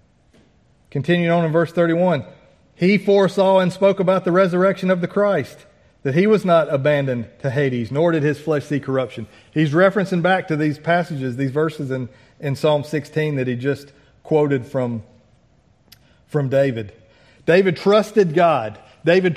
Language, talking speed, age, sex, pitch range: English, 160 wpm, 40-59, male, 125-170 Hz